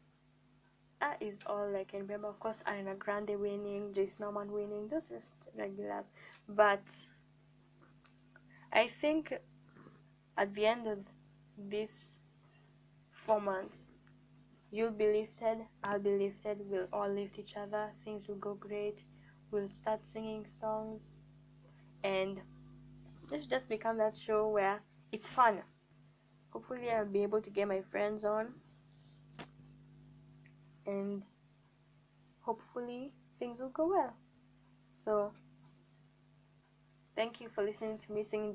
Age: 10-29